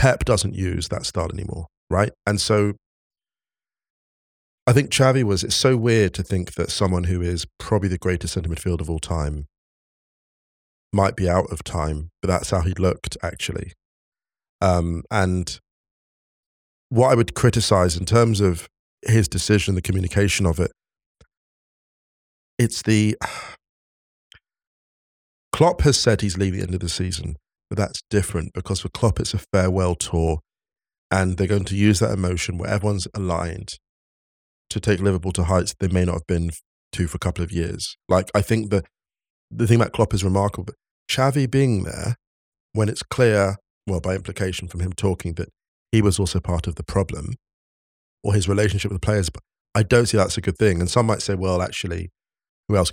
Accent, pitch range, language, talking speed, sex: British, 85-105 Hz, English, 180 wpm, male